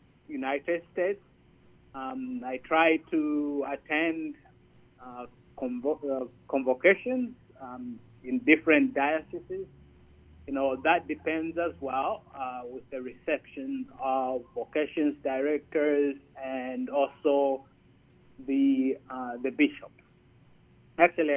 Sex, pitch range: male, 130-150 Hz